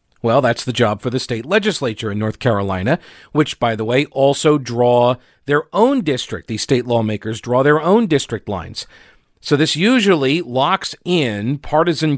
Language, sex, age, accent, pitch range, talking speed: English, male, 50-69, American, 120-145 Hz, 170 wpm